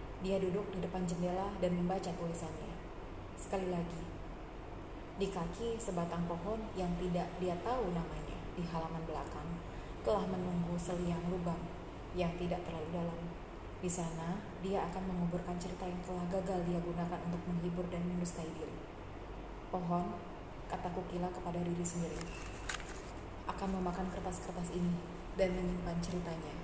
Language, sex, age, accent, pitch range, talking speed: Indonesian, female, 20-39, native, 170-190 Hz, 135 wpm